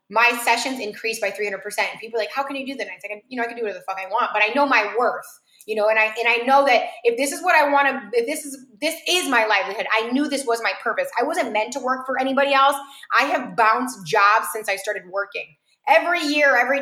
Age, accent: 20-39, American